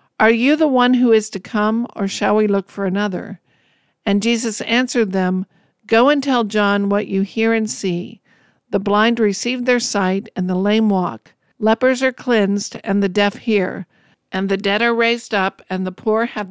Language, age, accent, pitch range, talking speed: English, 50-69, American, 200-240 Hz, 195 wpm